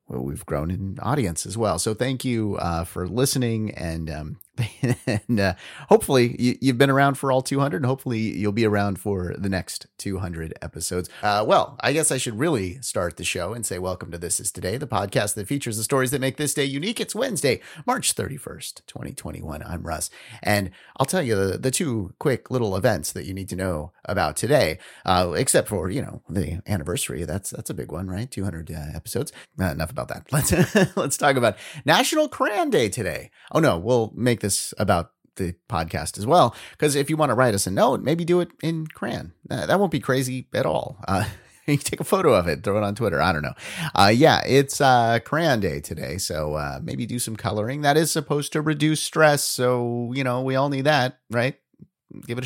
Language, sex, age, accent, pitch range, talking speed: English, male, 30-49, American, 95-140 Hz, 215 wpm